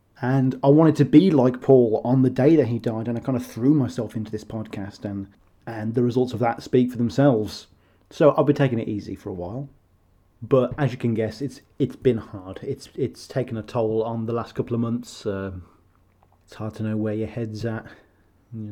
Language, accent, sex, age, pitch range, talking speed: English, British, male, 30-49, 105-125 Hz, 225 wpm